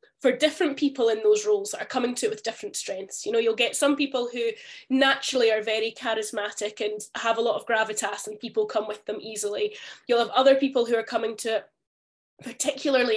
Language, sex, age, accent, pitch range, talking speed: English, female, 10-29, British, 220-285 Hz, 215 wpm